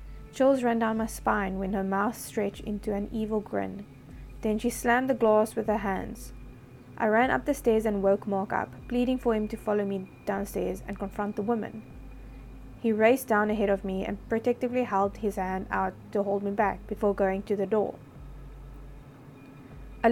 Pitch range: 195-235 Hz